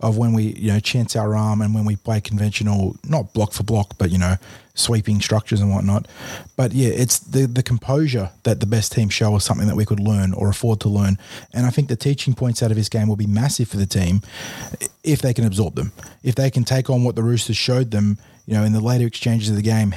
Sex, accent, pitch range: male, Australian, 105-120 Hz